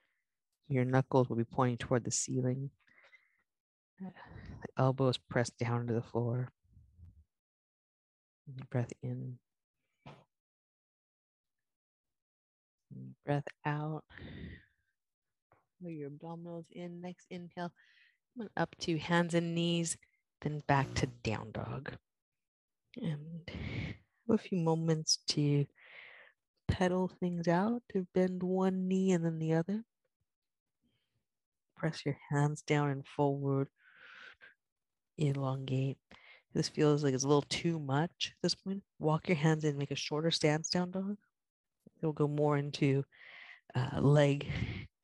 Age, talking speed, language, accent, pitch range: 30-49, 120 wpm, English, American, 130-175 Hz